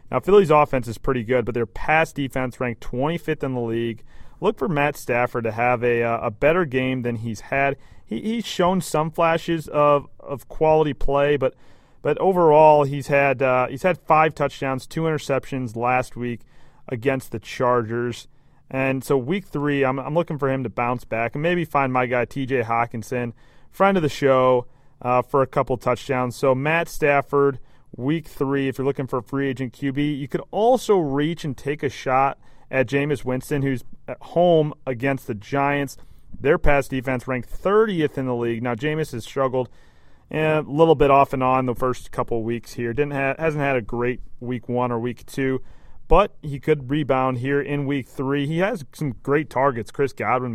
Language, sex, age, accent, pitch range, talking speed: English, male, 30-49, American, 125-145 Hz, 195 wpm